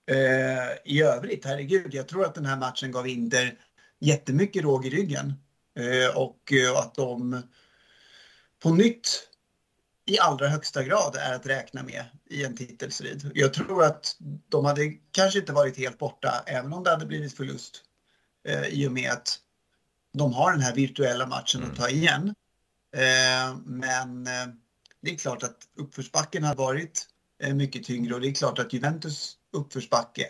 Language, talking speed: Swedish, 155 wpm